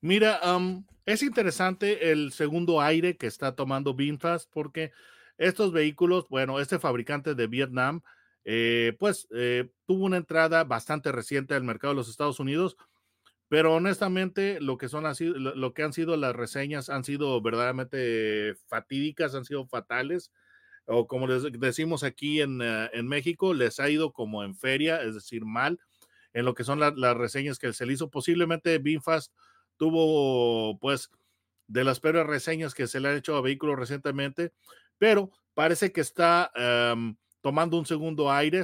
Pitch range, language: 120-160 Hz, Spanish